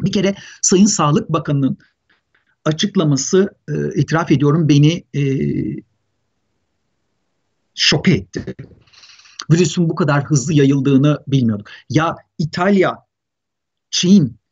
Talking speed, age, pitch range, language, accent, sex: 90 wpm, 50-69, 140-210 Hz, Turkish, native, male